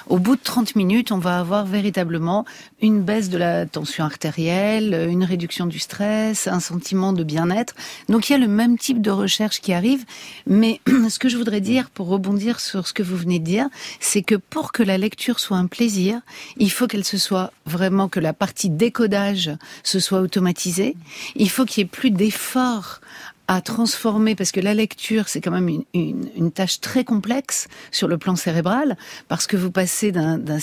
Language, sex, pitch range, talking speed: French, female, 185-230 Hz, 200 wpm